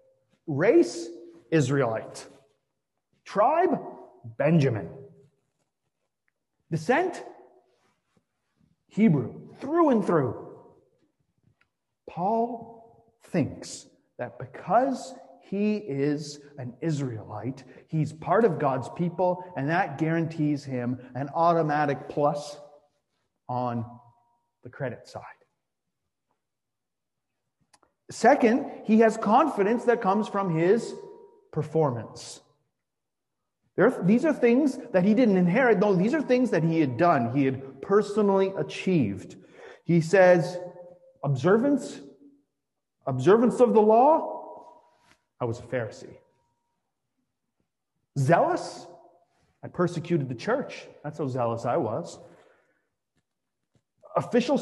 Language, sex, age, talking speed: English, male, 40-59, 95 wpm